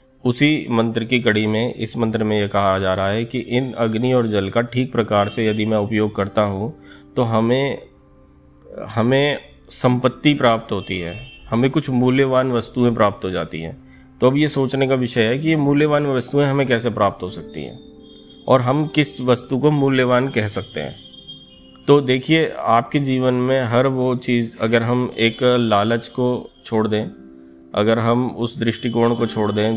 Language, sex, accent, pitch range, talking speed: Hindi, male, native, 105-125 Hz, 180 wpm